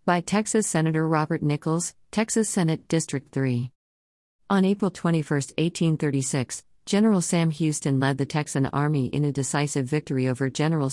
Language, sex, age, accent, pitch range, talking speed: English, female, 50-69, American, 130-160 Hz, 145 wpm